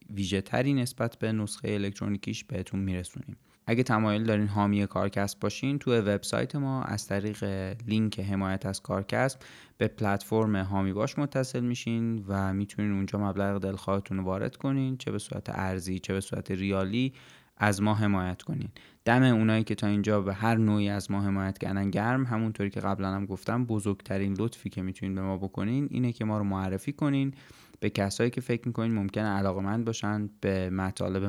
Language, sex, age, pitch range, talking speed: Persian, male, 20-39, 100-115 Hz, 170 wpm